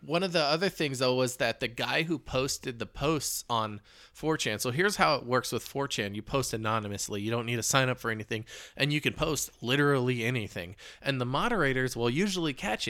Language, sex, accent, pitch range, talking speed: English, male, American, 120-150 Hz, 215 wpm